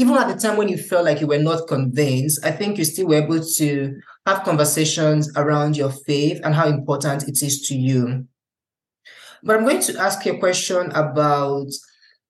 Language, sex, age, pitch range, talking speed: English, male, 20-39, 145-180 Hz, 195 wpm